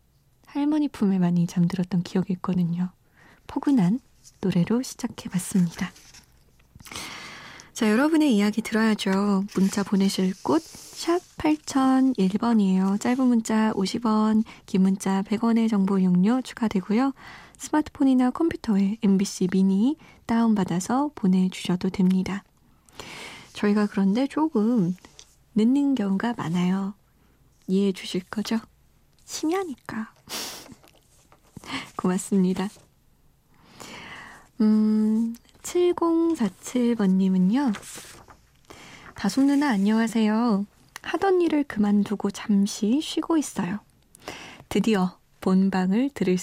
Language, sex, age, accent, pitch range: Korean, female, 20-39, native, 190-245 Hz